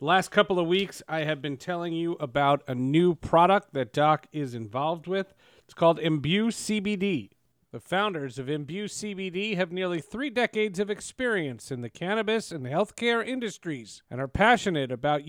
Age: 40-59